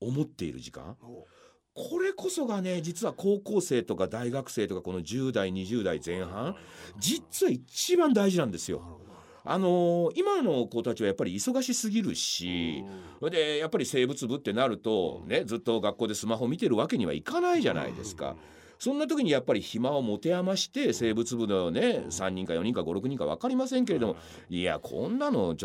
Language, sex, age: Japanese, male, 40-59